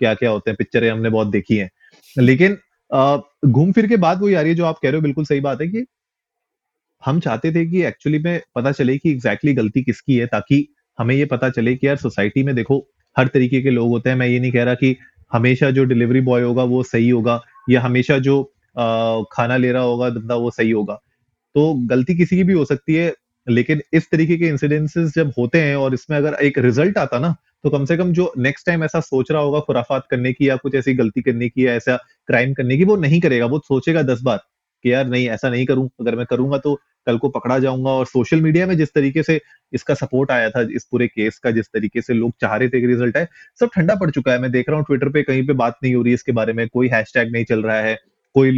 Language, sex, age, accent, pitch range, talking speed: Hindi, male, 30-49, native, 120-150 Hz, 250 wpm